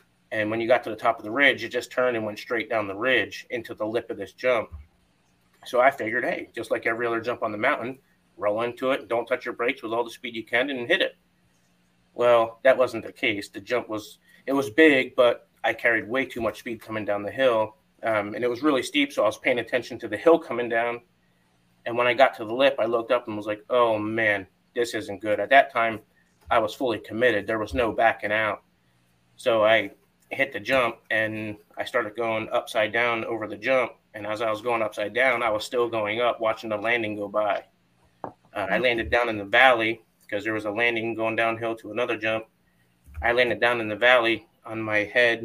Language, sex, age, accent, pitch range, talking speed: English, male, 30-49, American, 105-120 Hz, 235 wpm